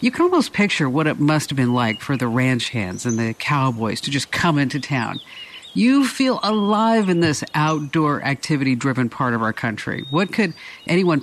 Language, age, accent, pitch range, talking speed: English, 50-69, American, 130-175 Hz, 190 wpm